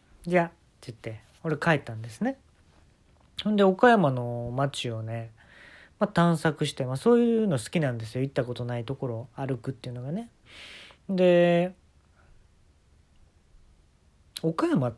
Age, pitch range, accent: 40-59, 110-170 Hz, native